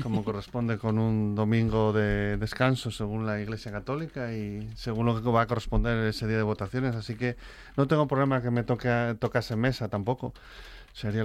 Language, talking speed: Spanish, 180 wpm